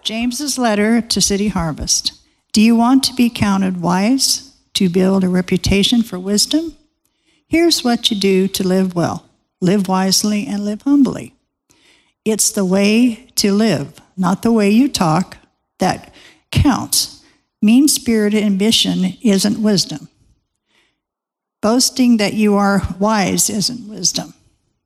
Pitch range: 190-235 Hz